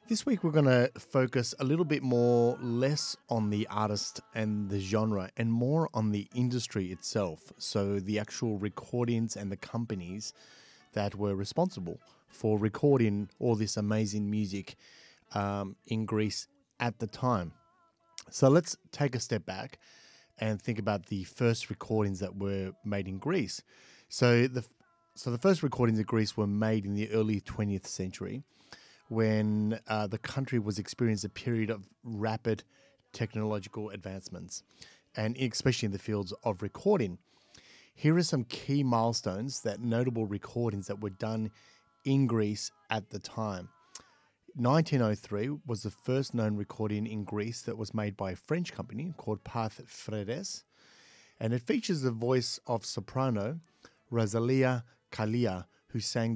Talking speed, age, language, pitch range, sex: 150 wpm, 30-49, English, 105-125 Hz, male